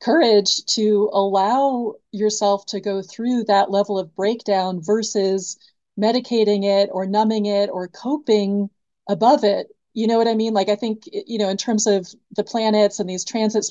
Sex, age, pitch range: female, 30-49, 200-230 Hz